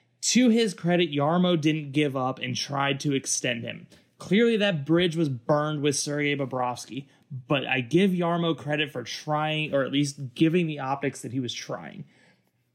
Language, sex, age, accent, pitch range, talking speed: English, male, 20-39, American, 130-170 Hz, 175 wpm